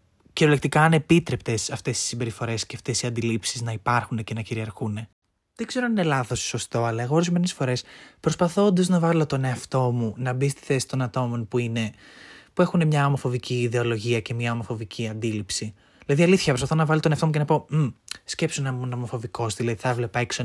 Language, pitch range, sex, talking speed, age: Greek, 115-150 Hz, male, 205 wpm, 20-39